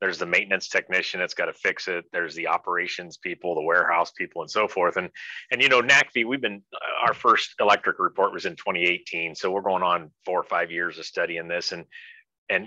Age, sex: 40-59, male